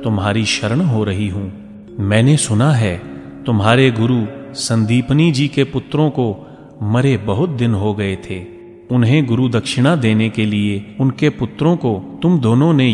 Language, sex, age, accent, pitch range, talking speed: Hindi, male, 30-49, native, 105-130 Hz, 155 wpm